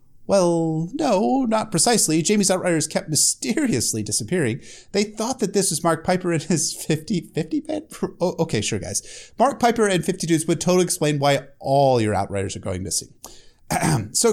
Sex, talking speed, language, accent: male, 170 wpm, English, American